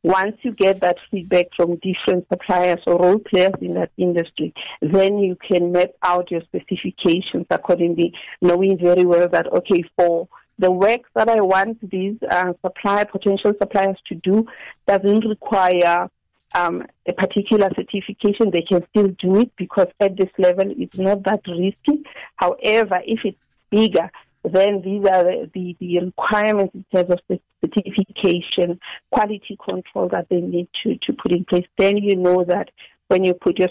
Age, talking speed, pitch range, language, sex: 50-69, 165 wpm, 175-200 Hz, English, female